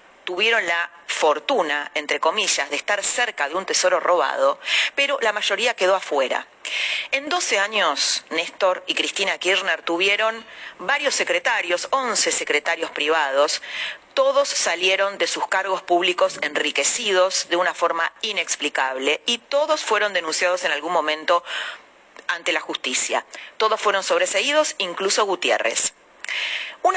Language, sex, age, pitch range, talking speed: Spanish, female, 30-49, 160-225 Hz, 125 wpm